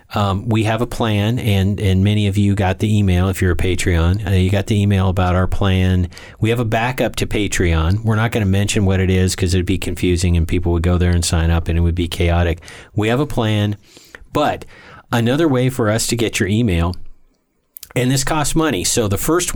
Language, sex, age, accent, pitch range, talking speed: English, male, 40-59, American, 90-110 Hz, 235 wpm